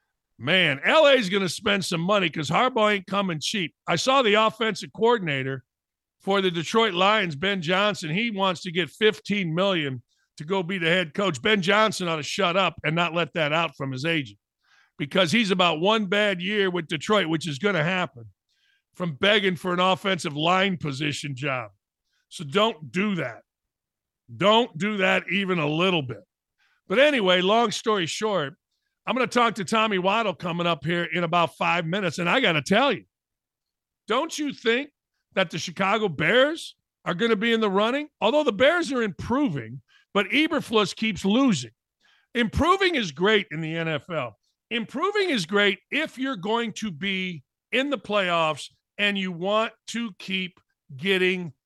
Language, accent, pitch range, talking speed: English, American, 165-215 Hz, 180 wpm